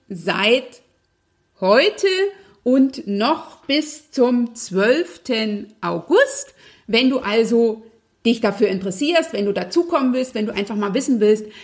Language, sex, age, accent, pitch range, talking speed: German, female, 50-69, German, 200-255 Hz, 125 wpm